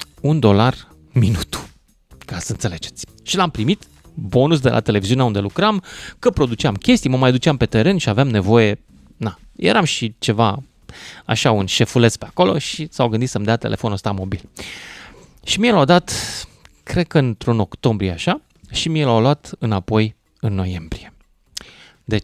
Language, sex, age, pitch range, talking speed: Romanian, male, 30-49, 110-165 Hz, 160 wpm